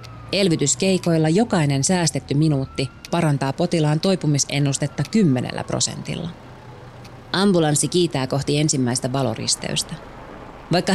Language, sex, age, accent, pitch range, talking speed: Finnish, female, 30-49, native, 135-180 Hz, 80 wpm